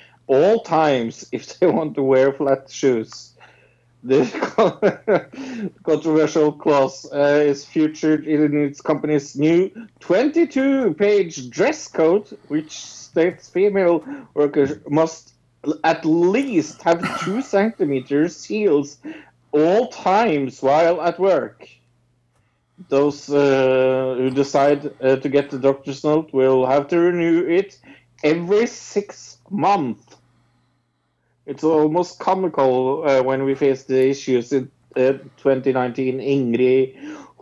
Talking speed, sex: 110 wpm, male